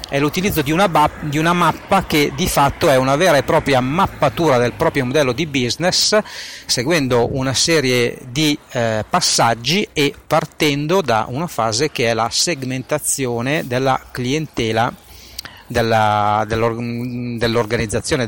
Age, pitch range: 40-59, 115-150 Hz